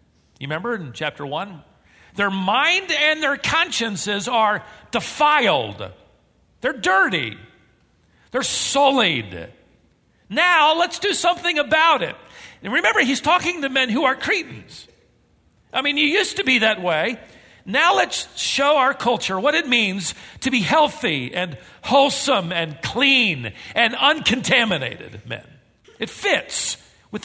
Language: English